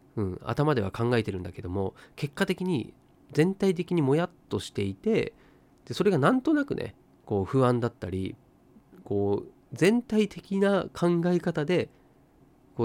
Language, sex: Japanese, male